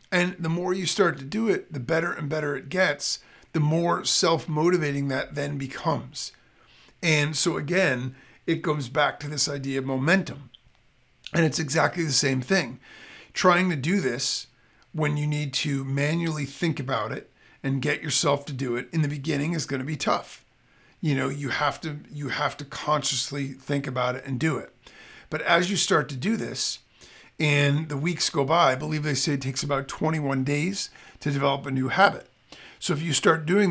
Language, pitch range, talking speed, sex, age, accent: English, 135-165 Hz, 195 wpm, male, 40-59, American